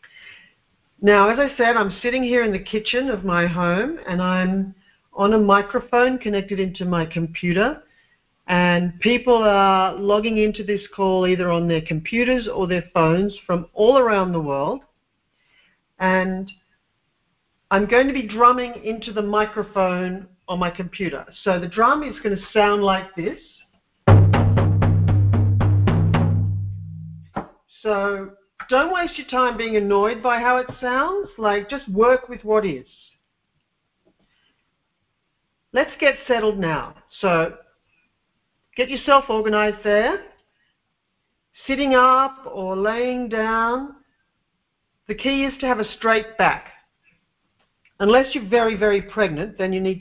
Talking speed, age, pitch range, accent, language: 130 wpm, 50-69, 175-235 Hz, Australian, English